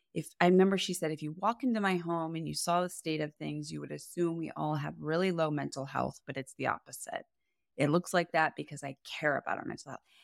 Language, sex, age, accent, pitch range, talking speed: English, female, 20-39, American, 150-215 Hz, 250 wpm